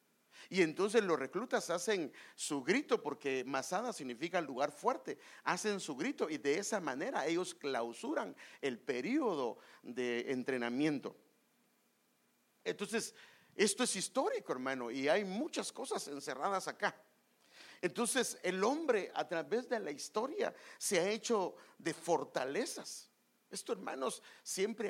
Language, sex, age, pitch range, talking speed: English, male, 50-69, 155-240 Hz, 125 wpm